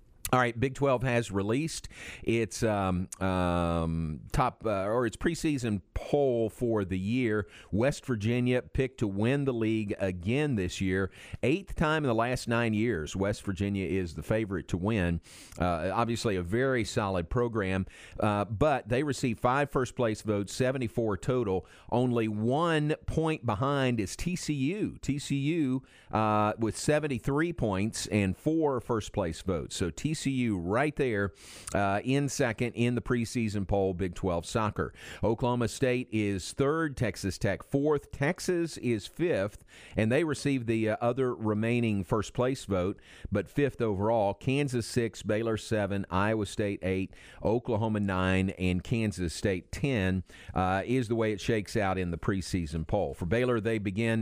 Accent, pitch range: American, 100-125 Hz